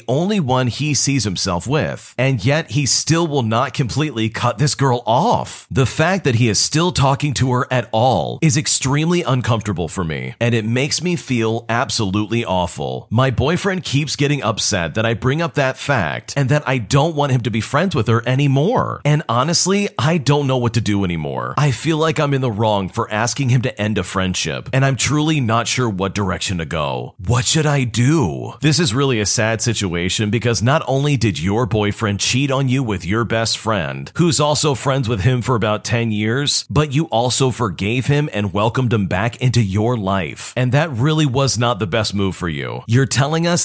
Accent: American